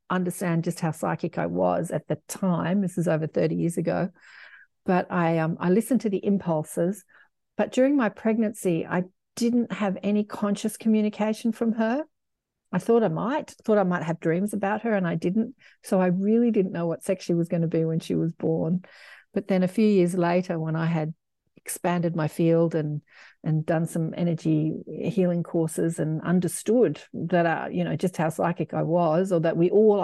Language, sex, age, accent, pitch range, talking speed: English, female, 50-69, Australian, 155-200 Hz, 200 wpm